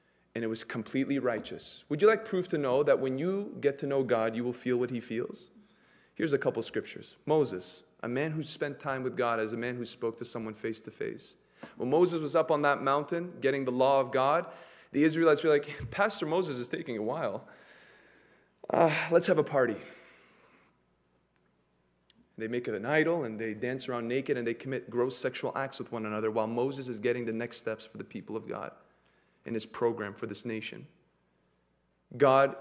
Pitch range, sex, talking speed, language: 110-140 Hz, male, 205 wpm, English